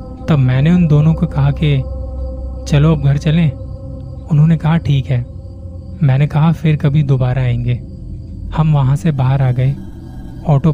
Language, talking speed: Hindi, 155 wpm